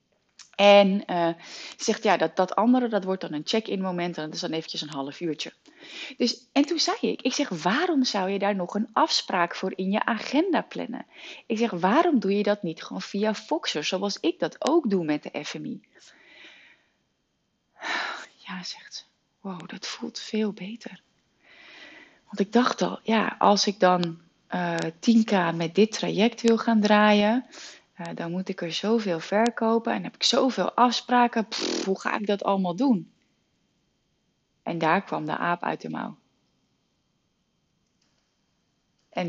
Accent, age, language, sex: Dutch, 30-49, Dutch, female